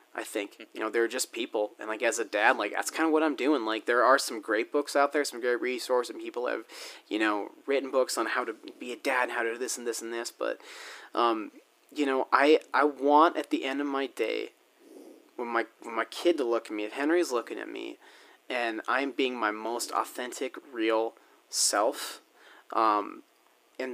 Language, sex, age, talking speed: English, male, 30-49, 225 wpm